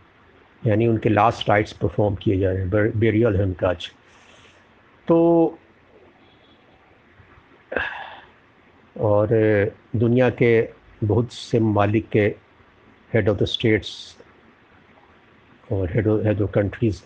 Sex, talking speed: male, 100 wpm